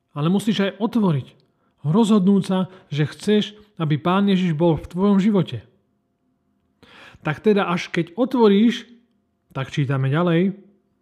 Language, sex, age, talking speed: Slovak, male, 30-49, 125 wpm